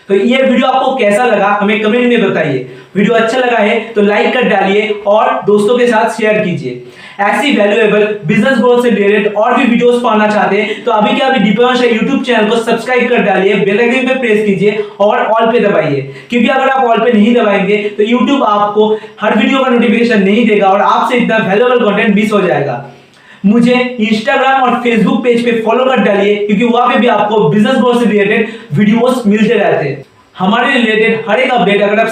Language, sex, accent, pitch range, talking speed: Hindi, male, native, 205-240 Hz, 180 wpm